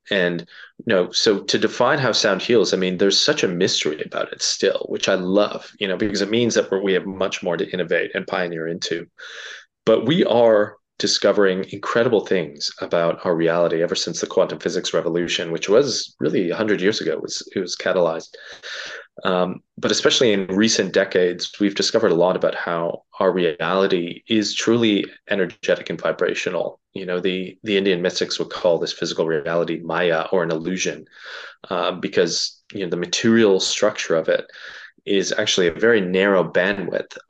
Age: 20-39